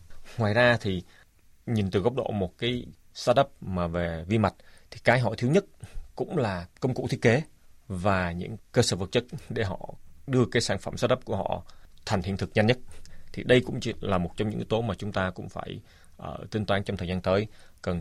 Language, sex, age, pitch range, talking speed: Vietnamese, male, 20-39, 90-105 Hz, 225 wpm